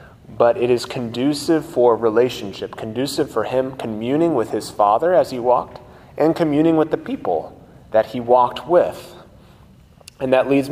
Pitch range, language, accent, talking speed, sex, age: 110-145 Hz, English, American, 155 wpm, male, 30-49